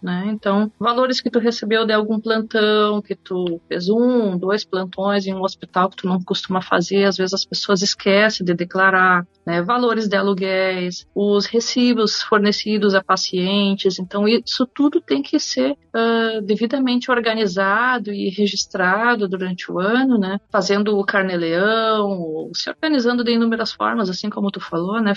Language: Portuguese